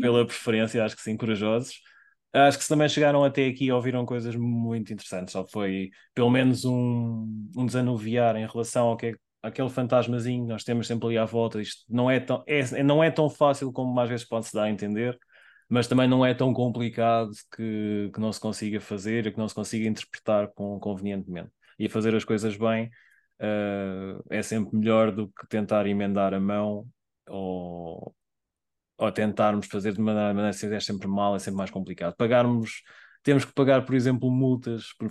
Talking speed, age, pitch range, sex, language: 195 wpm, 20-39, 105-125 Hz, male, Portuguese